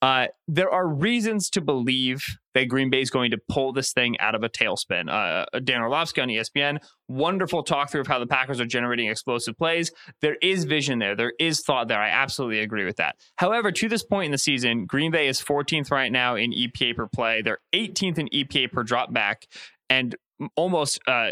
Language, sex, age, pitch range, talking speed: English, male, 20-39, 125-160 Hz, 210 wpm